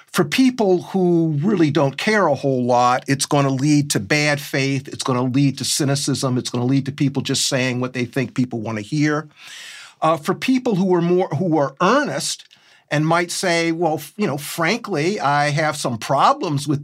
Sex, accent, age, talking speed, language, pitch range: male, American, 40-59, 205 wpm, English, 140-185 Hz